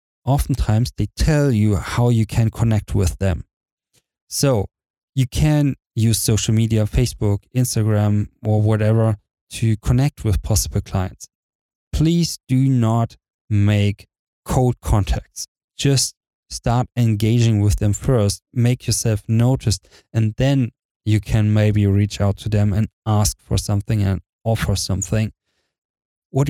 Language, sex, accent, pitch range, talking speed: English, male, German, 105-125 Hz, 130 wpm